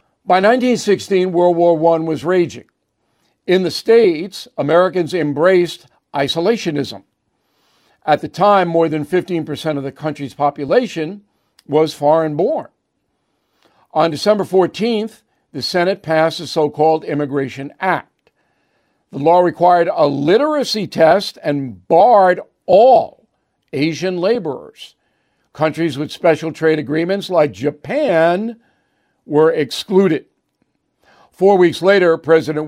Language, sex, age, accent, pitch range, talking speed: English, male, 60-79, American, 155-185 Hz, 110 wpm